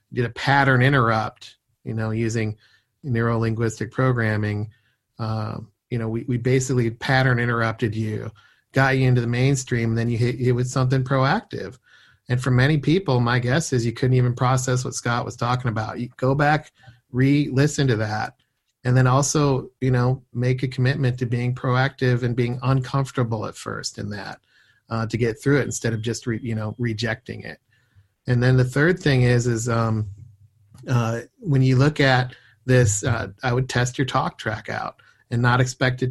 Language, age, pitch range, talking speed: English, 40-59, 115-130 Hz, 185 wpm